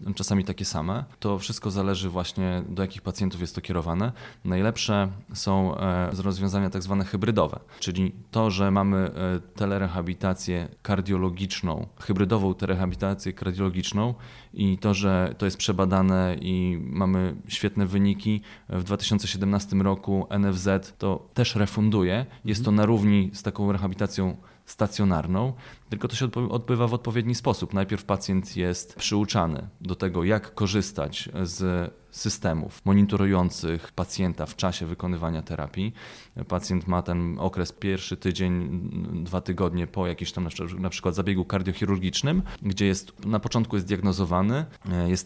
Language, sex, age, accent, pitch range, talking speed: Polish, male, 30-49, native, 90-100 Hz, 135 wpm